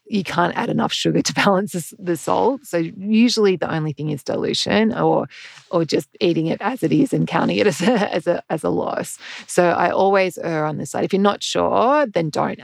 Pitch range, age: 170-215 Hz, 30-49